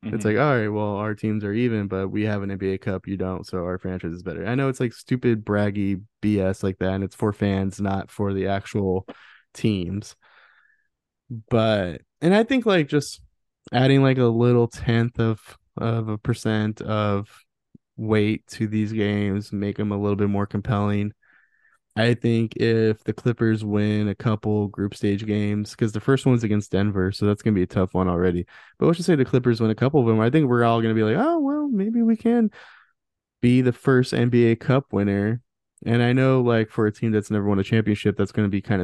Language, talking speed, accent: English, 215 wpm, American